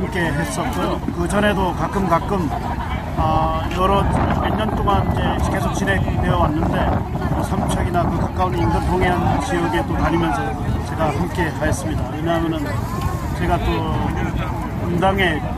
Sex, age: male, 30-49